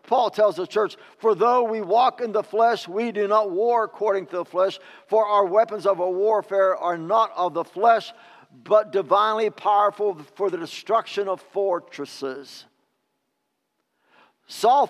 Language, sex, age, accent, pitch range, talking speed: English, male, 60-79, American, 180-240 Hz, 155 wpm